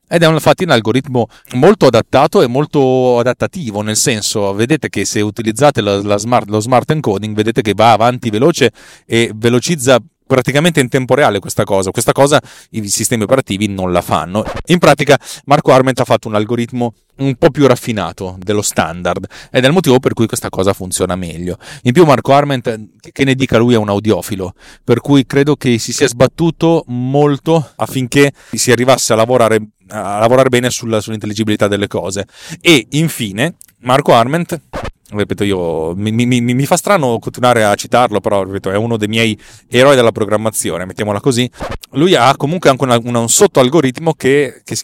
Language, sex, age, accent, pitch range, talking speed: Italian, male, 30-49, native, 105-135 Hz, 180 wpm